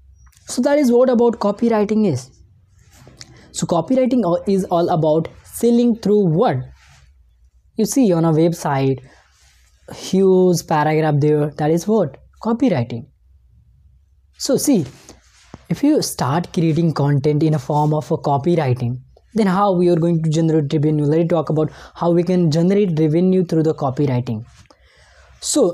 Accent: Indian